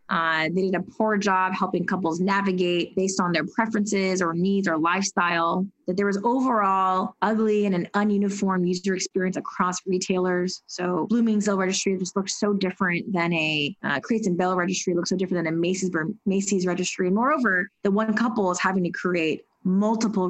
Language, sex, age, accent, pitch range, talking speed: English, female, 20-39, American, 180-215 Hz, 175 wpm